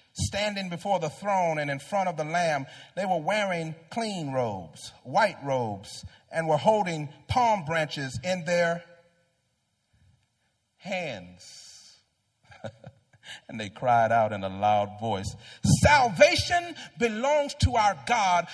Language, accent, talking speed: English, American, 125 wpm